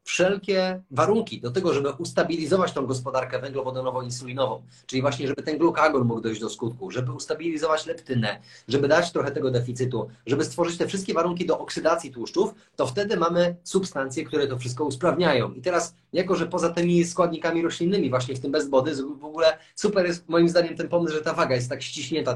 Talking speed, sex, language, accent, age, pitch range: 180 wpm, male, Polish, native, 30-49, 130-175 Hz